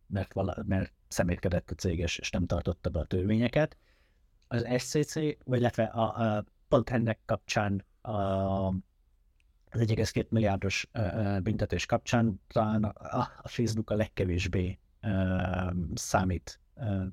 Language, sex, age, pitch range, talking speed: Hungarian, male, 50-69, 90-110 Hz, 115 wpm